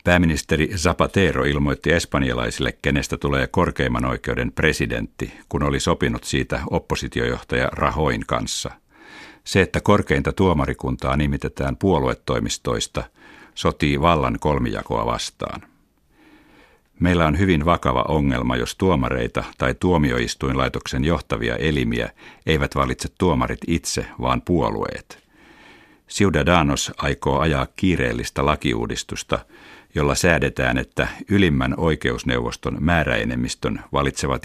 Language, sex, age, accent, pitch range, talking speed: Finnish, male, 60-79, native, 65-85 Hz, 95 wpm